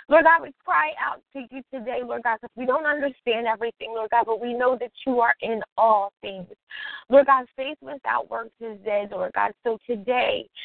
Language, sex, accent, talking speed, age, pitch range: English, female, American, 215 wpm, 20-39, 230-285 Hz